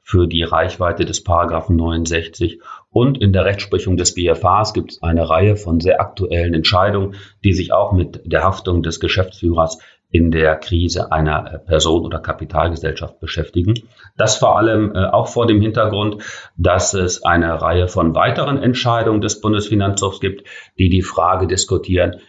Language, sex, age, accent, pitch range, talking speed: German, male, 40-59, German, 85-100 Hz, 155 wpm